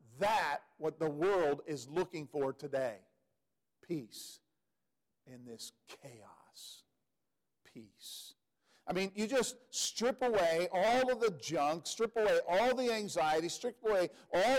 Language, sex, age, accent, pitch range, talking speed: English, male, 50-69, American, 160-215 Hz, 130 wpm